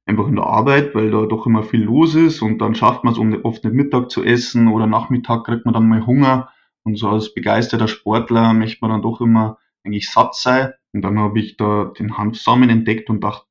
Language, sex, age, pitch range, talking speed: German, male, 20-39, 105-125 Hz, 225 wpm